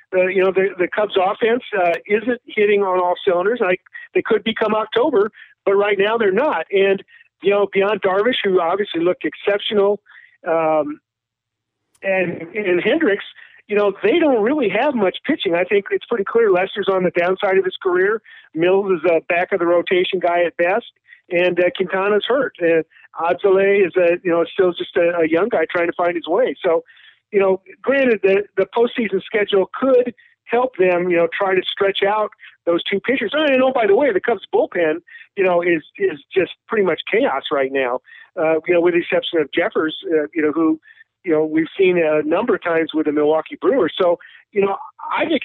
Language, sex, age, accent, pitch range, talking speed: English, male, 50-69, American, 175-225 Hz, 205 wpm